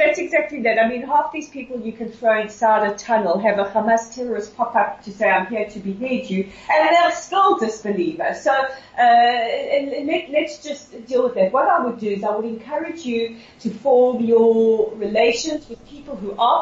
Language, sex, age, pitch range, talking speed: English, female, 40-59, 200-270 Hz, 200 wpm